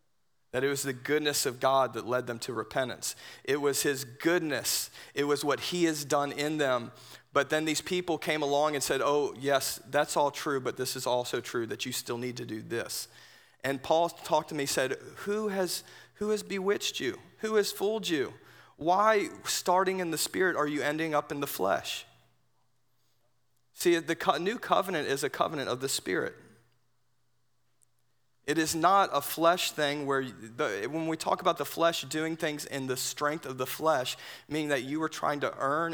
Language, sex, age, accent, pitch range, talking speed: English, male, 40-59, American, 125-160 Hz, 190 wpm